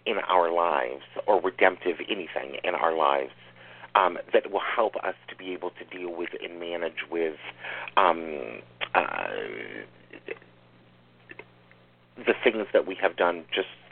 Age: 40-59